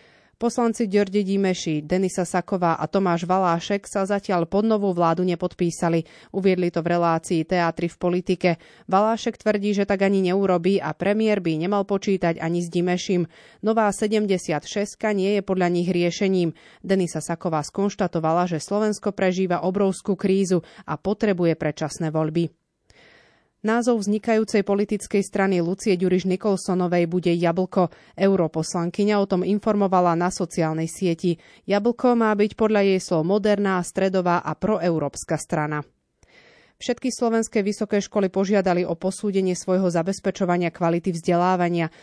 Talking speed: 130 wpm